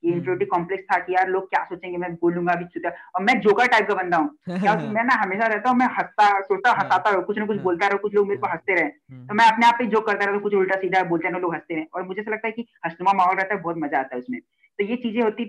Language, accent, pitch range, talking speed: Hindi, native, 175-215 Hz, 270 wpm